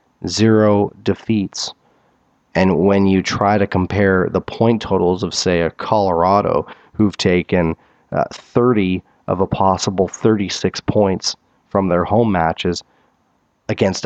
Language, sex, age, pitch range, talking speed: English, male, 30-49, 95-150 Hz, 125 wpm